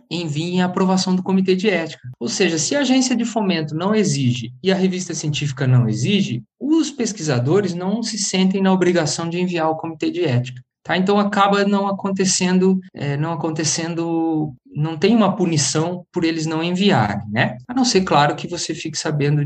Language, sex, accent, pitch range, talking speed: Portuguese, male, Brazilian, 140-195 Hz, 185 wpm